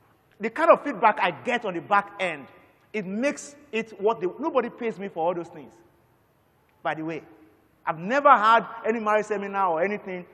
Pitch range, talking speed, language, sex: 155-220 Hz, 185 wpm, English, male